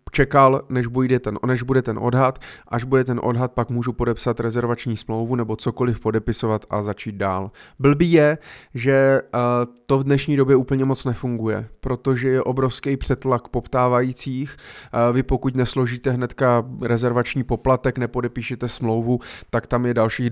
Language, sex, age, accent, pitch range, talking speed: Czech, male, 30-49, native, 115-130 Hz, 140 wpm